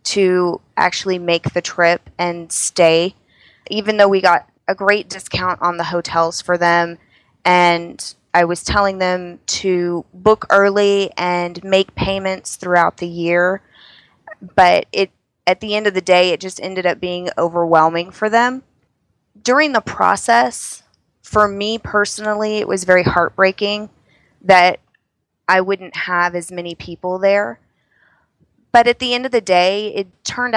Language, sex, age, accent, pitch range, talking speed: English, female, 20-39, American, 175-200 Hz, 150 wpm